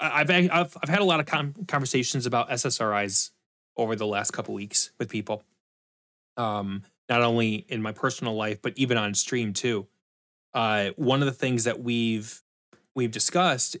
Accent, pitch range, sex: American, 110-145 Hz, male